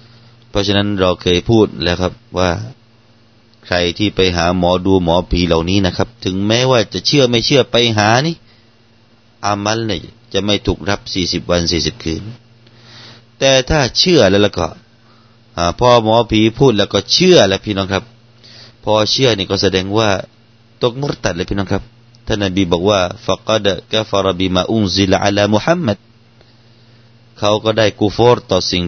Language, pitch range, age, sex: Thai, 95-115 Hz, 30-49, male